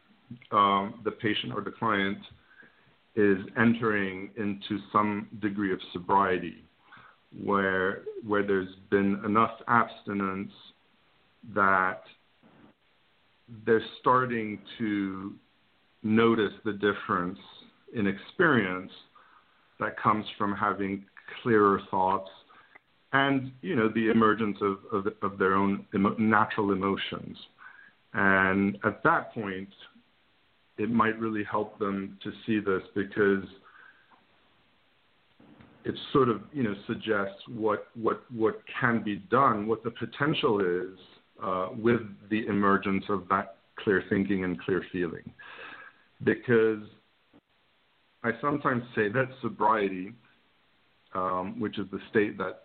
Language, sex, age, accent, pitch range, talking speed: English, male, 50-69, American, 95-110 Hz, 110 wpm